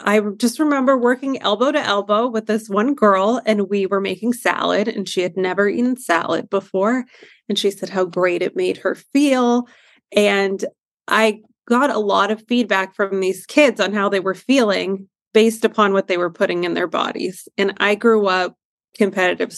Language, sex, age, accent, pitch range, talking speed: English, female, 30-49, American, 185-220 Hz, 185 wpm